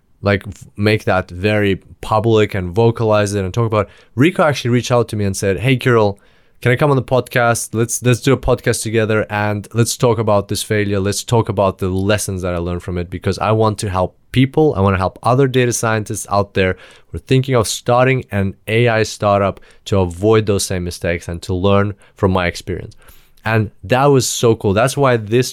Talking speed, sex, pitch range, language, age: 215 wpm, male, 100-125 Hz, English, 20-39